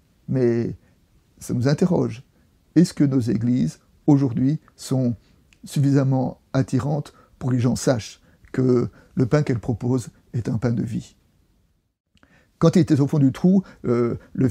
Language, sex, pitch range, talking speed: French, male, 125-150 Hz, 150 wpm